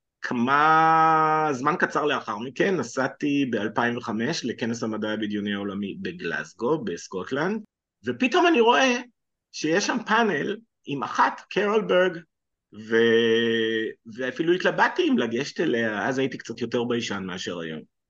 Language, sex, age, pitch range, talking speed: Hebrew, male, 50-69, 110-185 Hz, 115 wpm